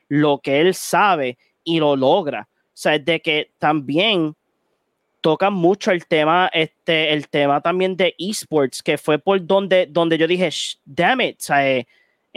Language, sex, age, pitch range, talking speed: Spanish, male, 20-39, 150-185 Hz, 165 wpm